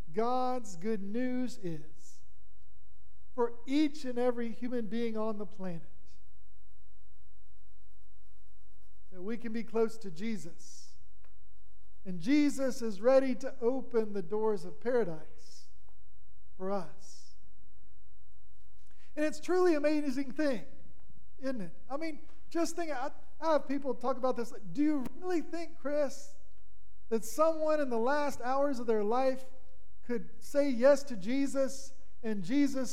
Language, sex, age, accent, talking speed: English, male, 50-69, American, 130 wpm